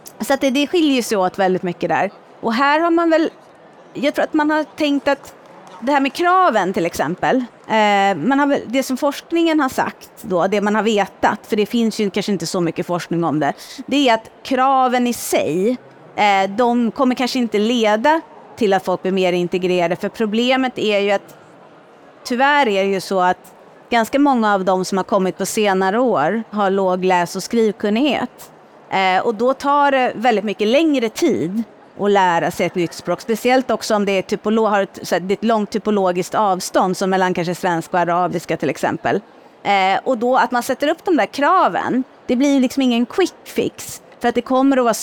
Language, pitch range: Swedish, 195-260 Hz